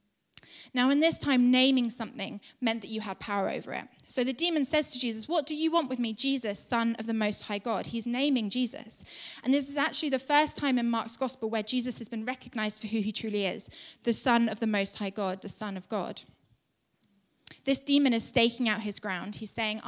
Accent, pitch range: British, 215-265 Hz